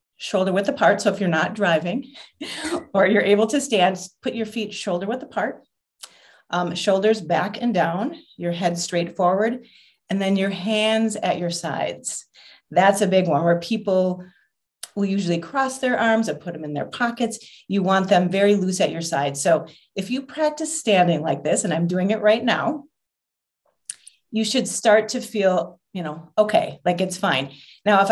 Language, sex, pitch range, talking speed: English, female, 175-220 Hz, 185 wpm